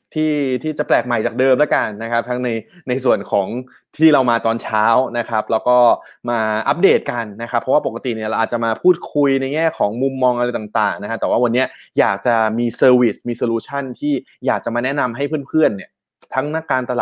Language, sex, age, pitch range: Thai, male, 20-39, 115-140 Hz